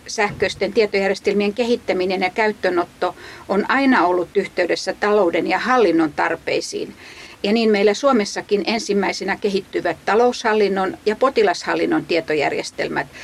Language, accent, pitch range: Finnish, native, 185-235 Hz